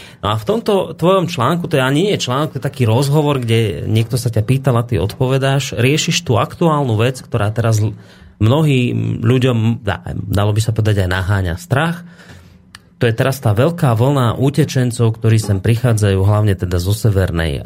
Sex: male